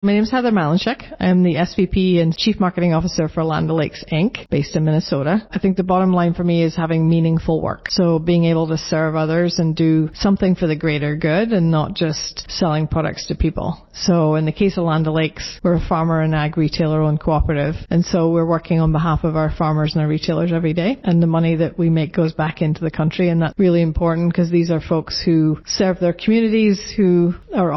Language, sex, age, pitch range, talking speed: English, female, 40-59, 160-180 Hz, 225 wpm